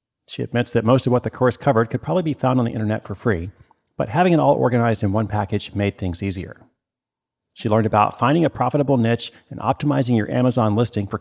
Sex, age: male, 40-59